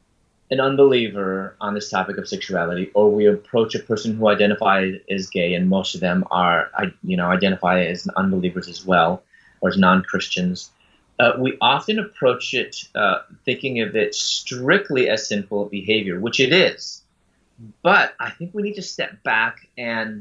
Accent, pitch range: American, 100-140 Hz